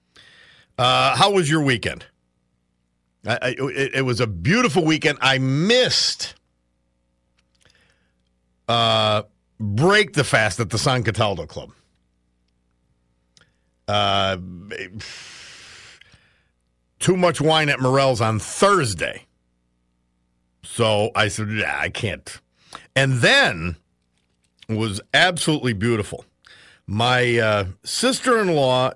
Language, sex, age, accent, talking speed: English, male, 50-69, American, 95 wpm